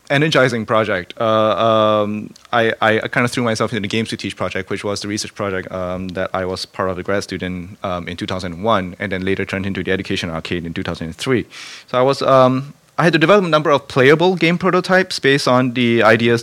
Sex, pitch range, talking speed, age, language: male, 100-125 Hz, 225 wpm, 30-49, English